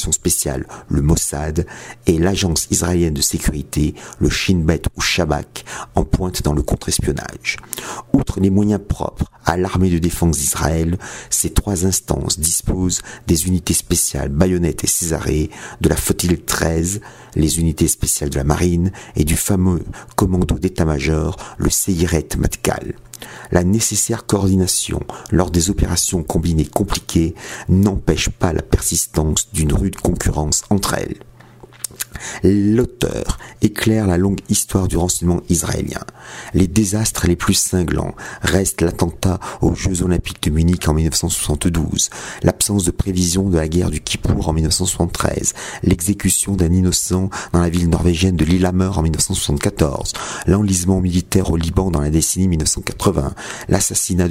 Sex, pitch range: male, 80-95 Hz